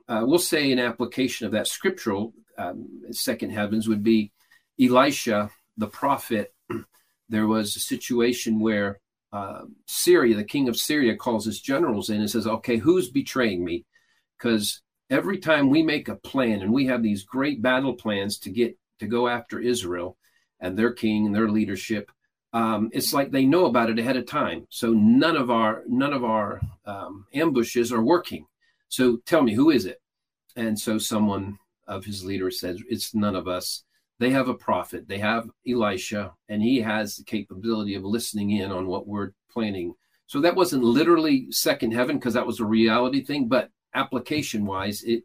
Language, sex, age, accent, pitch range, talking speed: English, male, 50-69, American, 105-125 Hz, 180 wpm